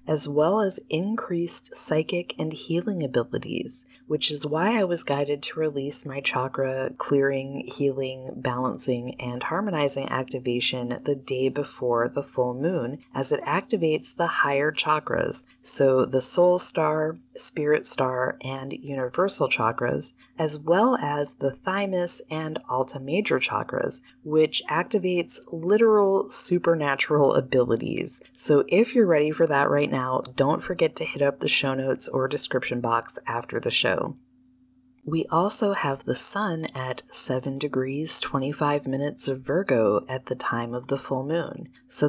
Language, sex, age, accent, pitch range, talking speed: English, female, 20-39, American, 135-170 Hz, 145 wpm